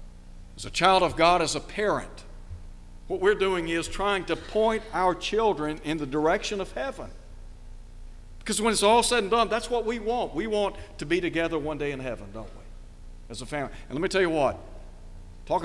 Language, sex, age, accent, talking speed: English, male, 60-79, American, 205 wpm